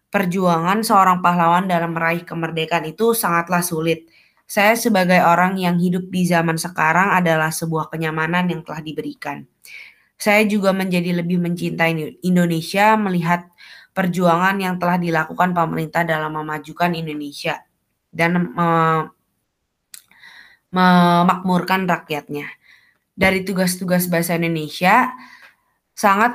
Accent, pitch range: native, 165-195 Hz